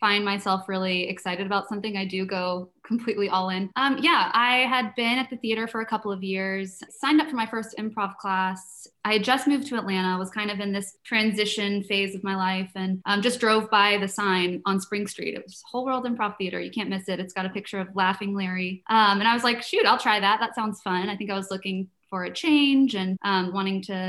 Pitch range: 190-225 Hz